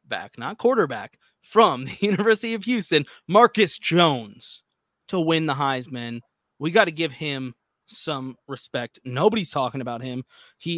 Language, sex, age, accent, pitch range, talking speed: English, male, 20-39, American, 125-165 Hz, 140 wpm